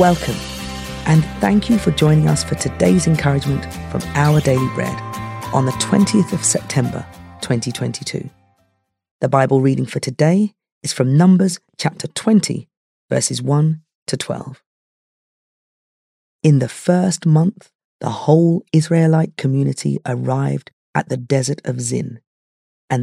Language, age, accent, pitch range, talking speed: English, 40-59, British, 130-180 Hz, 130 wpm